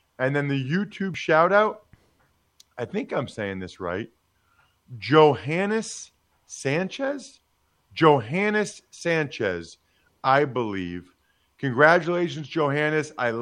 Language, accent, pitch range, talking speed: English, American, 110-150 Hz, 90 wpm